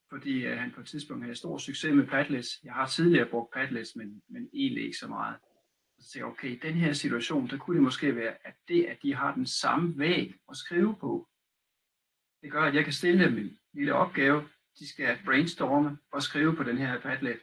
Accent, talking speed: native, 220 wpm